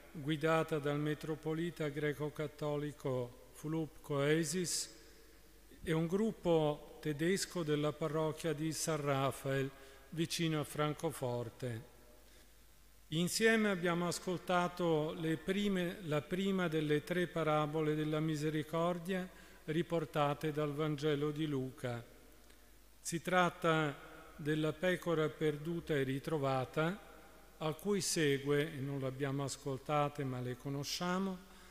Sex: male